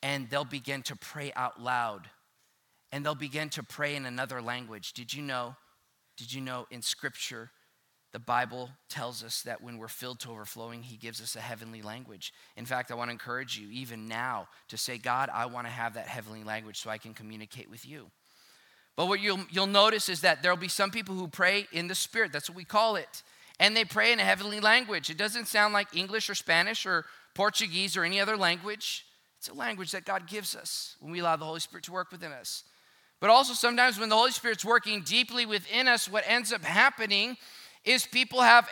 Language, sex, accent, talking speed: English, male, American, 215 wpm